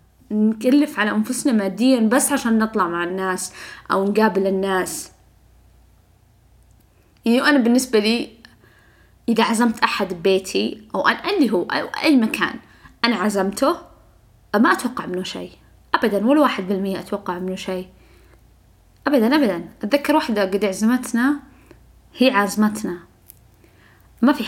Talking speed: 115 wpm